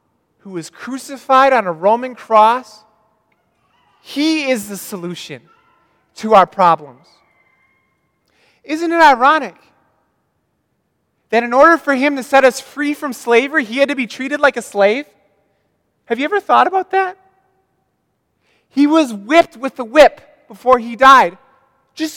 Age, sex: 20-39, male